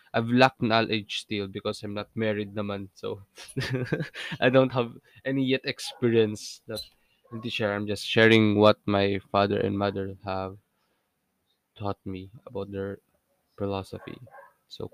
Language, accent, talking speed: Filipino, native, 125 wpm